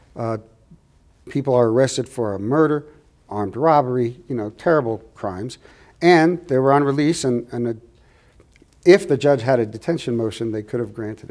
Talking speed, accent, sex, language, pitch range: 165 wpm, American, male, English, 110-145 Hz